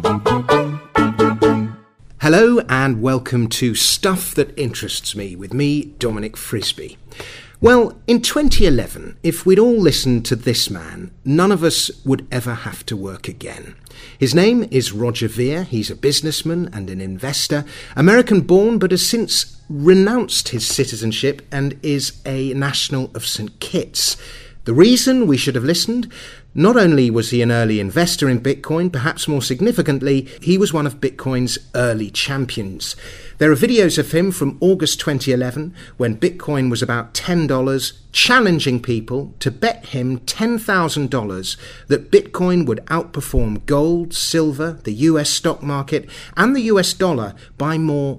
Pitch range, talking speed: 120-165 Hz, 145 wpm